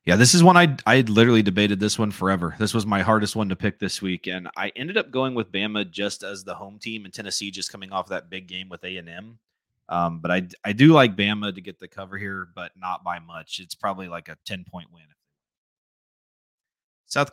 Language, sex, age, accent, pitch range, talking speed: English, male, 30-49, American, 90-115 Hz, 225 wpm